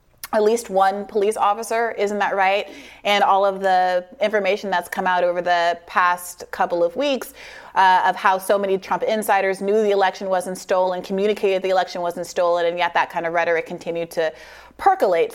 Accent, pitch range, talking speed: American, 175-205 Hz, 190 wpm